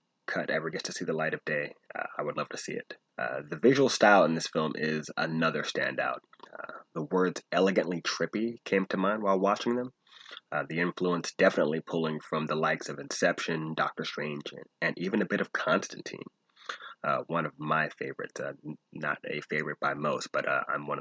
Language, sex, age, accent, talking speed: English, male, 30-49, American, 200 wpm